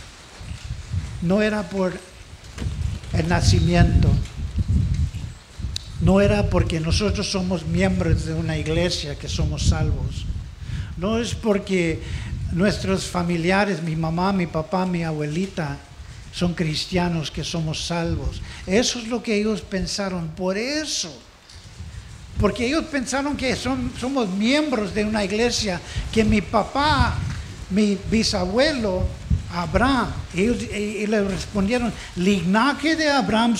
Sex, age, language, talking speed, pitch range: male, 50-69, English, 110 wpm, 175-245 Hz